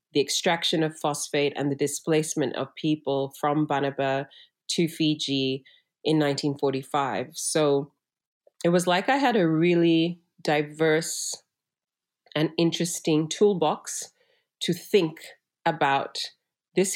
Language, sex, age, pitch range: English, female, 30-49, 155-190 Hz